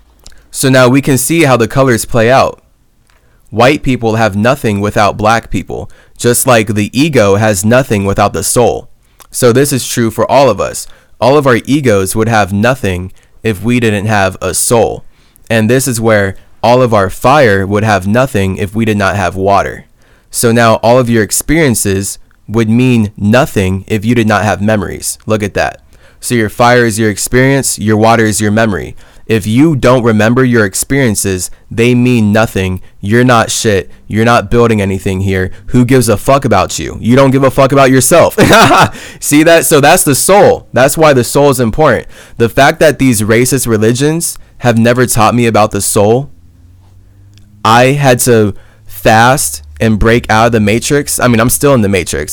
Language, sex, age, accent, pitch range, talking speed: English, male, 20-39, American, 100-125 Hz, 190 wpm